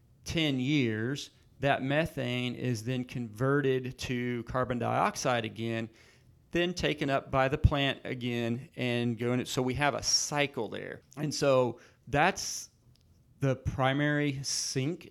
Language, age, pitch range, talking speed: English, 40-59, 120-140 Hz, 125 wpm